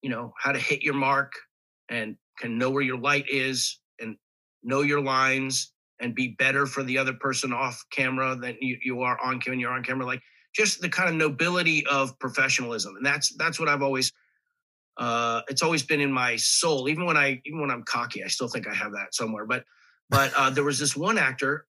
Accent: American